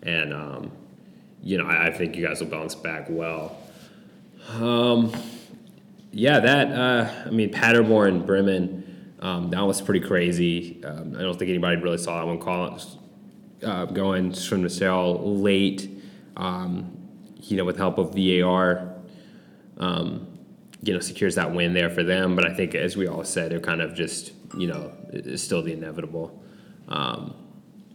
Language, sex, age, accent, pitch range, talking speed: English, male, 20-39, American, 90-140 Hz, 170 wpm